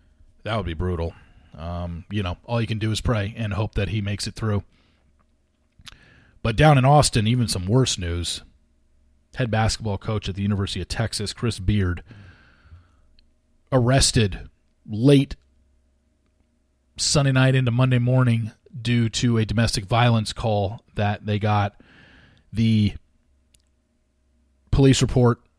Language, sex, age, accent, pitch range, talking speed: English, male, 30-49, American, 85-120 Hz, 135 wpm